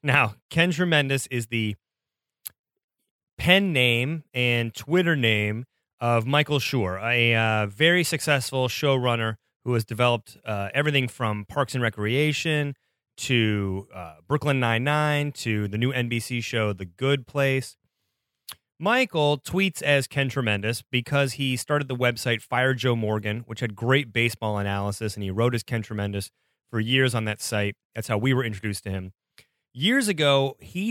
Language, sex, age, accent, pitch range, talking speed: English, male, 30-49, American, 110-140 Hz, 150 wpm